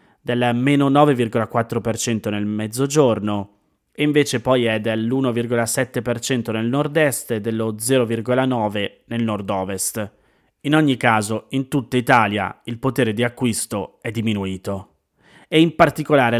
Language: Italian